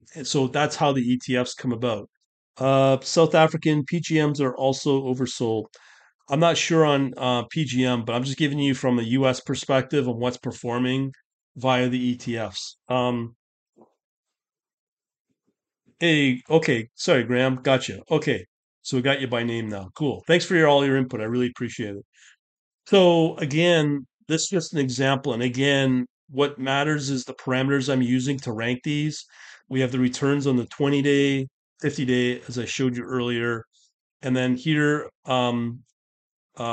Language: English